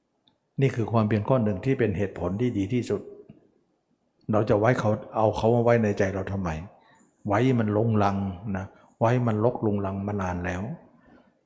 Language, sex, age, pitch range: Thai, male, 60-79, 100-125 Hz